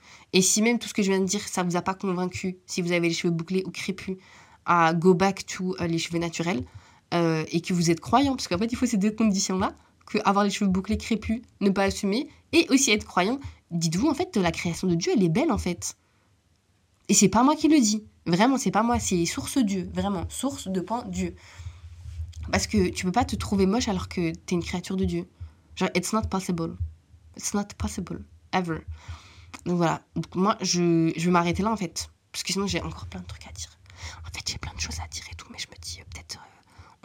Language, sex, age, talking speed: French, female, 20-39, 255 wpm